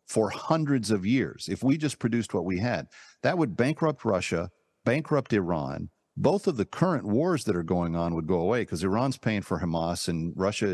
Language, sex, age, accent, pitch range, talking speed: English, male, 50-69, American, 85-120 Hz, 200 wpm